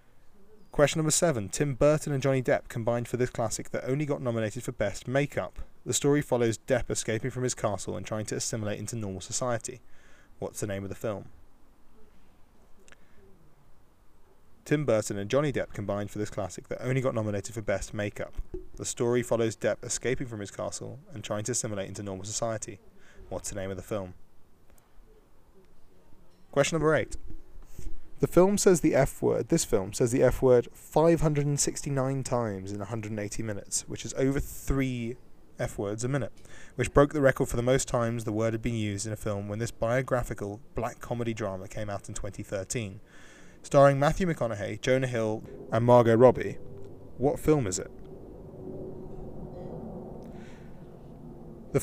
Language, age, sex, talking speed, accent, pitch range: English, 20-39, male, 165 wpm, British, 105-135 Hz